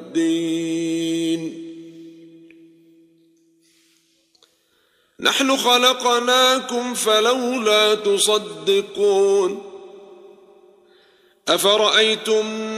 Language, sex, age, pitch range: Arabic, male, 50-69, 165-220 Hz